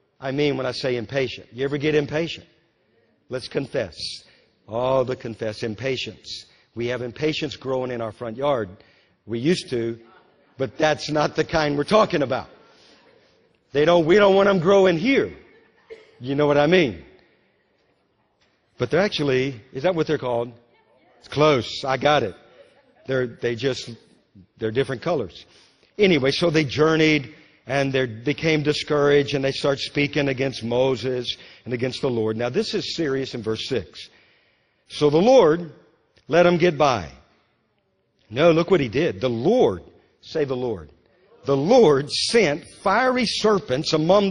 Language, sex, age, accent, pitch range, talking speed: English, male, 50-69, American, 125-175 Hz, 155 wpm